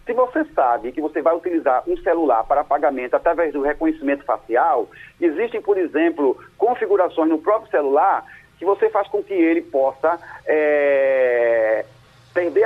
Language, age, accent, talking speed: Portuguese, 40-59, Brazilian, 140 wpm